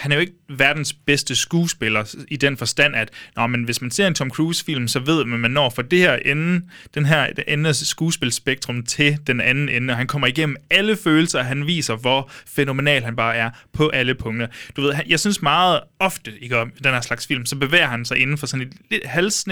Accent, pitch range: native, 120-155 Hz